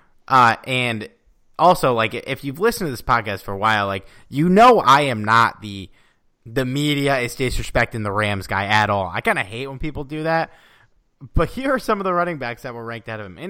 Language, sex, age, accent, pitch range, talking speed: English, male, 30-49, American, 115-185 Hz, 230 wpm